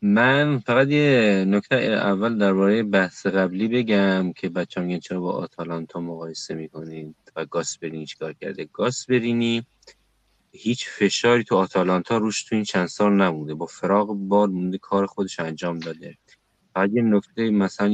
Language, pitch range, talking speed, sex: Persian, 90-110 Hz, 145 wpm, male